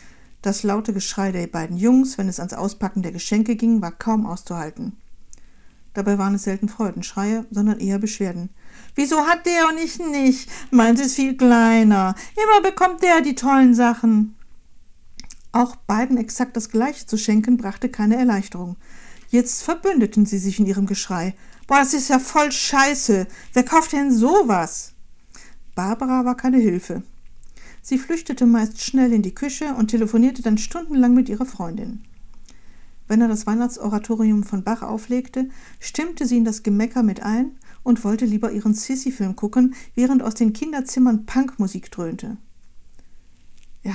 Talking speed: 155 wpm